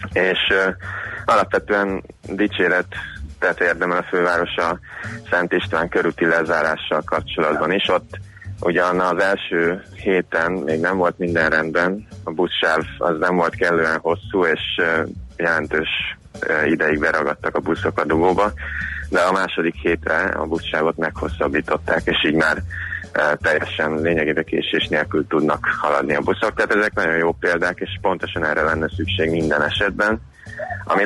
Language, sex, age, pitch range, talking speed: Hungarian, male, 20-39, 85-100 Hz, 140 wpm